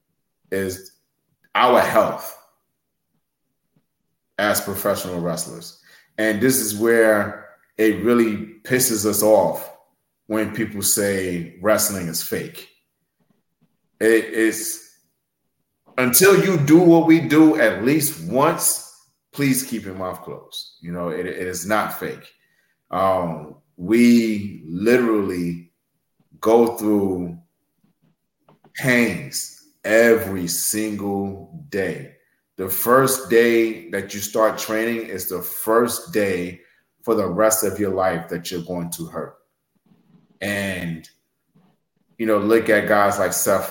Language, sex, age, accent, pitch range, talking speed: English, male, 30-49, American, 95-115 Hz, 115 wpm